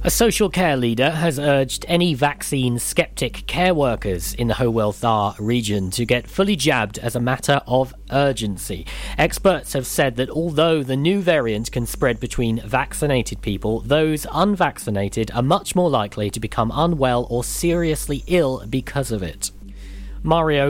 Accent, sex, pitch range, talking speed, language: British, male, 115-160 Hz, 150 wpm, English